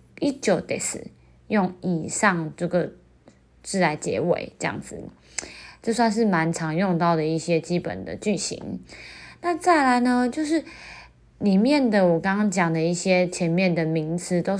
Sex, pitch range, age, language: female, 170-225 Hz, 20-39, Chinese